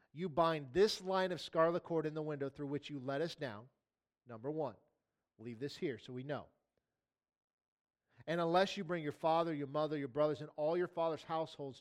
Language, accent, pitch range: English, American, 140-175 Hz